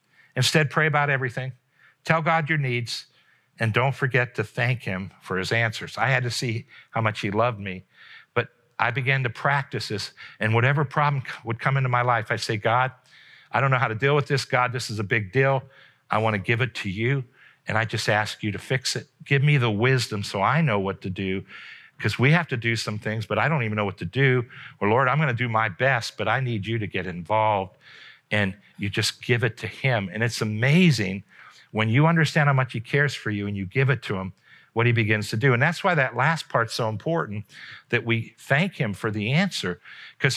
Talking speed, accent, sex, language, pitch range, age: 230 wpm, American, male, English, 110-145 Hz, 50-69